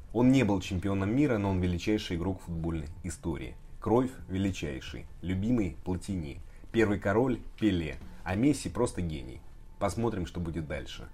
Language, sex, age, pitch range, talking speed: Russian, male, 30-49, 85-105 Hz, 140 wpm